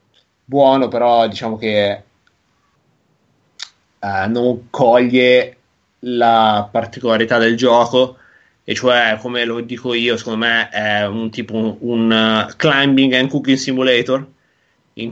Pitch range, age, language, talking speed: 110-125 Hz, 20-39, Italian, 115 wpm